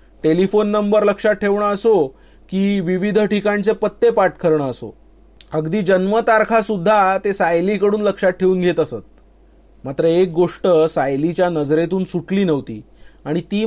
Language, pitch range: Marathi, 165-205 Hz